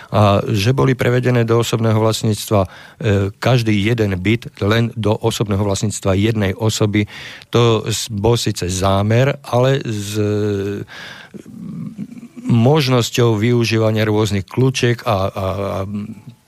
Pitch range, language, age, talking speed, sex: 100-120 Hz, Slovak, 50-69, 115 wpm, male